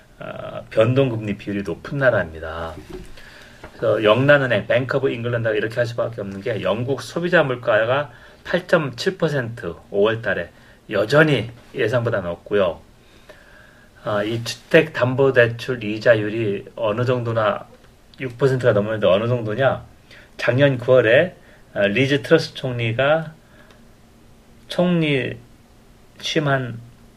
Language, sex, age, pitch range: Korean, male, 40-59, 110-135 Hz